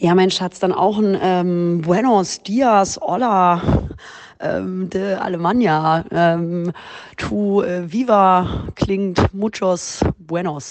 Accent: German